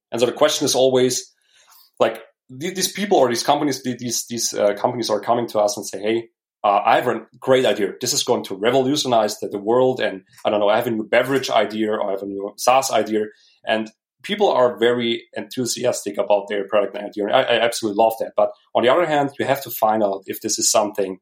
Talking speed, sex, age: 240 wpm, male, 30-49